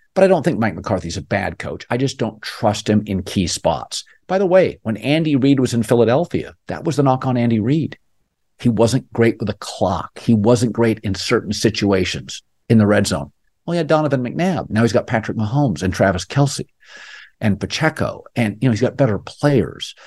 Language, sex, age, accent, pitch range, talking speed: English, male, 50-69, American, 95-125 Hz, 210 wpm